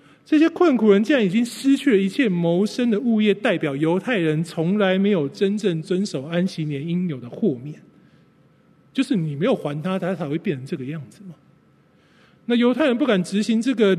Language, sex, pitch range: Chinese, male, 155-210 Hz